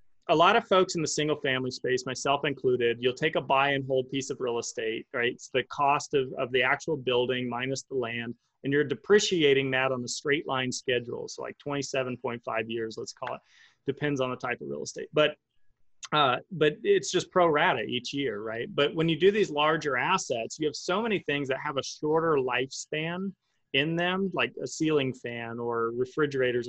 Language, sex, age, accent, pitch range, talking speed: English, male, 30-49, American, 125-155 Hz, 205 wpm